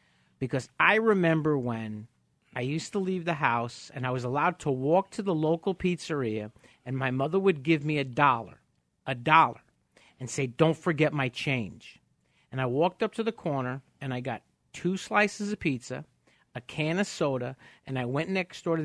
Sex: male